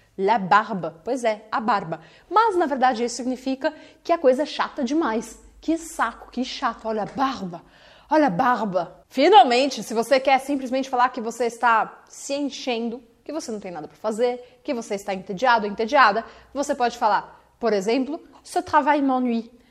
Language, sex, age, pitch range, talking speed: Portuguese, female, 30-49, 220-280 Hz, 180 wpm